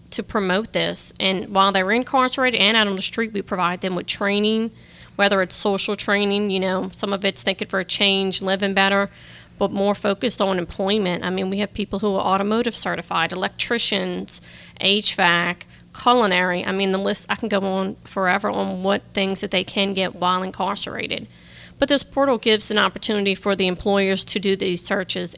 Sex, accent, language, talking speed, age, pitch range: female, American, English, 190 wpm, 30-49, 190-210 Hz